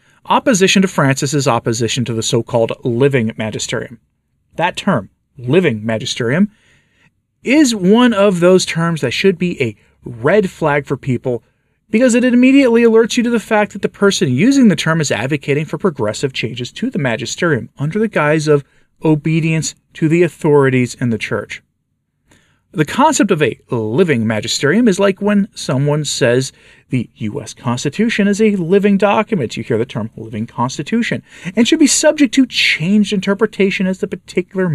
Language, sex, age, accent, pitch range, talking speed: English, male, 40-59, American, 130-200 Hz, 160 wpm